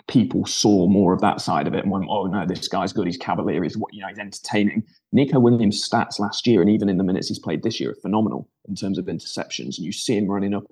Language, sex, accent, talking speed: English, male, British, 275 wpm